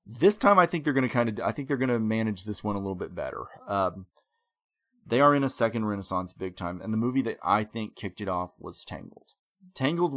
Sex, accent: male, American